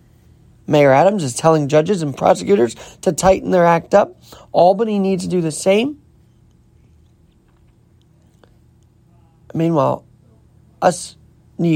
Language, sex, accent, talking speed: English, male, American, 105 wpm